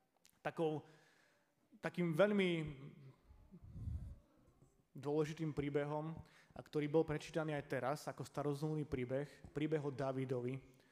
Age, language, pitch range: 30-49, Slovak, 135-160 Hz